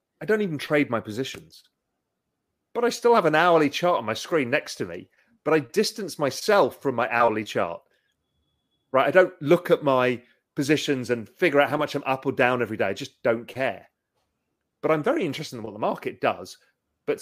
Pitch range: 125-175 Hz